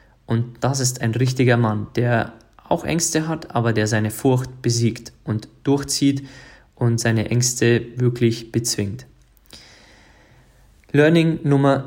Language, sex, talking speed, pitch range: German, male, 120 wpm, 115-140 Hz